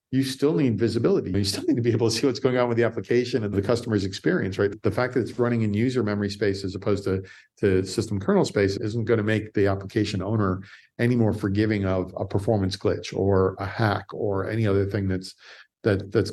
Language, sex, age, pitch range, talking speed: English, male, 50-69, 95-120 Hz, 230 wpm